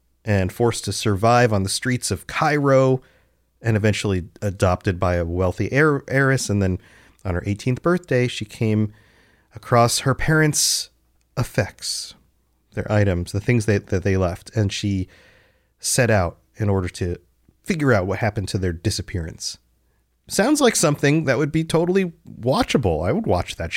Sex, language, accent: male, English, American